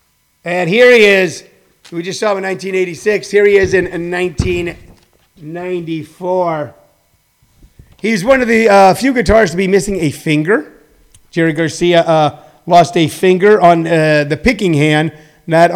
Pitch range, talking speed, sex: 155-185 Hz, 150 wpm, male